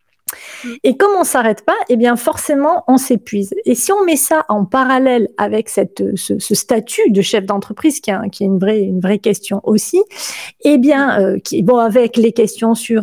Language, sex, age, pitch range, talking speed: French, female, 30-49, 215-270 Hz, 205 wpm